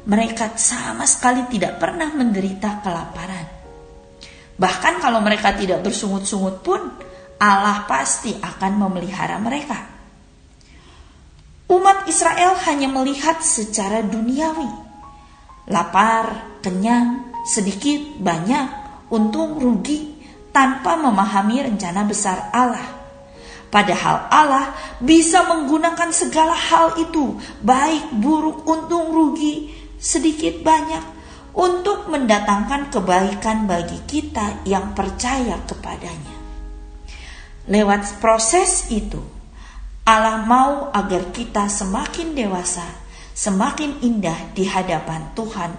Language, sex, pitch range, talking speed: Indonesian, female, 195-300 Hz, 90 wpm